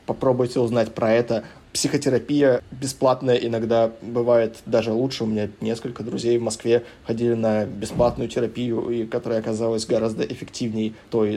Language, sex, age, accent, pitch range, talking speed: Russian, male, 20-39, native, 110-125 Hz, 135 wpm